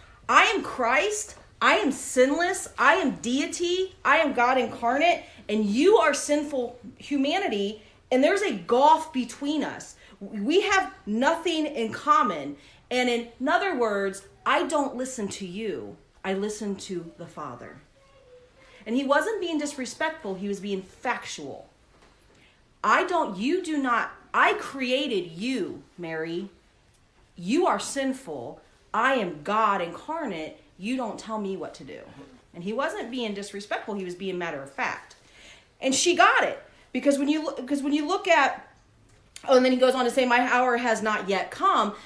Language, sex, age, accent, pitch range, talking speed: English, female, 40-59, American, 210-295 Hz, 155 wpm